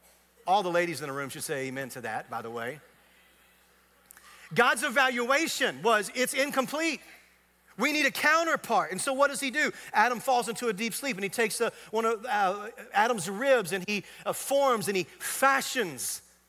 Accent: American